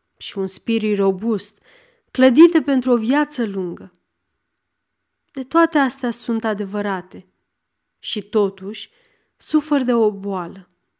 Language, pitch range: Romanian, 195-275 Hz